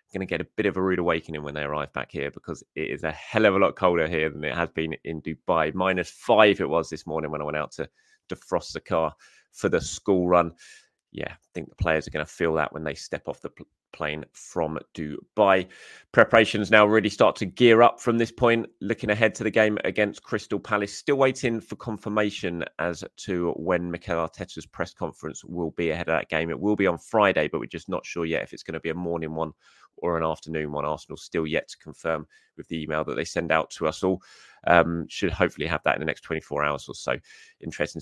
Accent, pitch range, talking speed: British, 80-105 Hz, 240 wpm